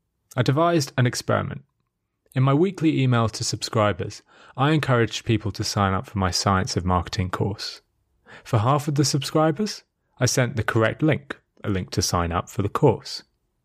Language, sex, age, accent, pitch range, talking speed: English, male, 30-49, British, 105-145 Hz, 175 wpm